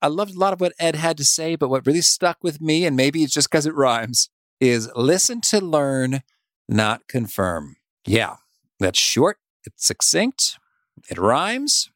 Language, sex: English, male